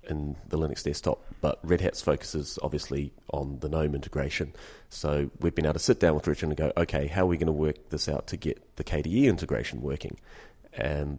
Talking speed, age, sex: 215 wpm, 30-49, male